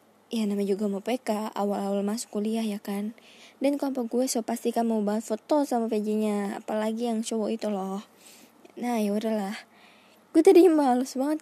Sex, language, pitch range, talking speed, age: female, Indonesian, 215-255 Hz, 175 wpm, 20-39